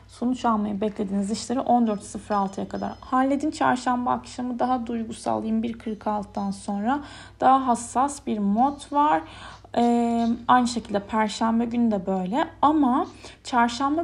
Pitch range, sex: 205-250 Hz, female